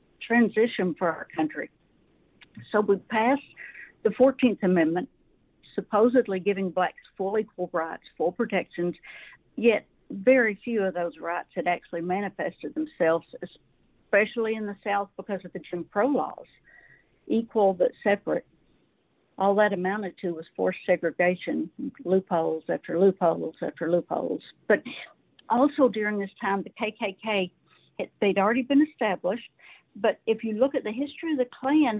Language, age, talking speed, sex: English, 60-79, 140 wpm, female